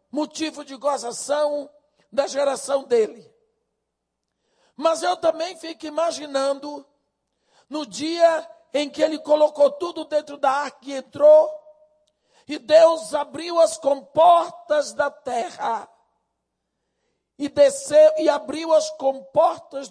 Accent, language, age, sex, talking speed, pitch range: Brazilian, Portuguese, 60-79, male, 110 wpm, 255-315 Hz